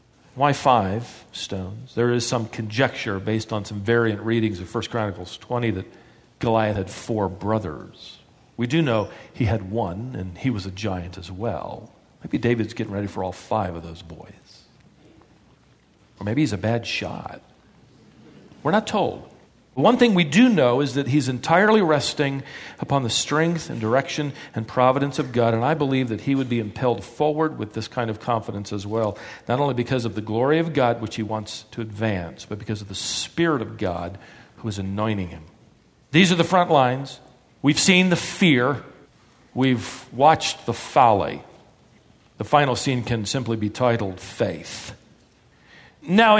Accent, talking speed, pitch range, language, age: American, 175 wpm, 110-145 Hz, English, 50-69